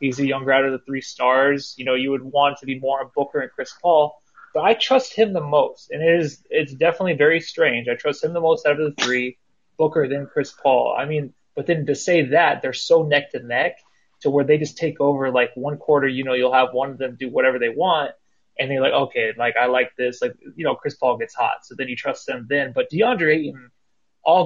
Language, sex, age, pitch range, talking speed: English, male, 20-39, 130-165 Hz, 245 wpm